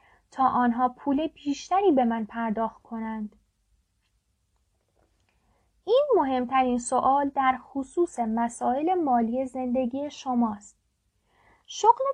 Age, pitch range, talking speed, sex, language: 10-29, 235-295 Hz, 90 wpm, female, Persian